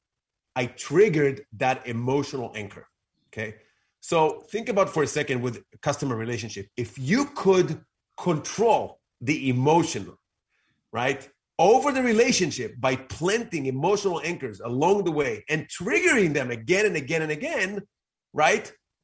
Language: English